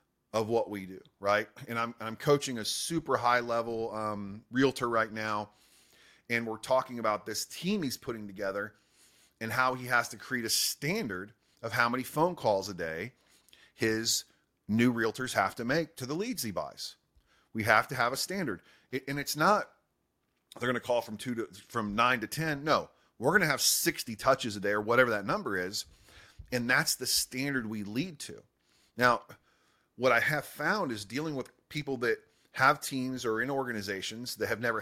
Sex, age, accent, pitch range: male, 30-49, American, 110-135 Hz